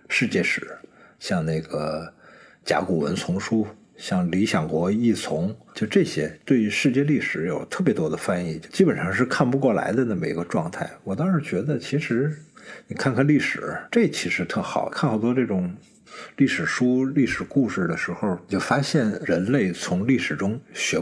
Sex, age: male, 50-69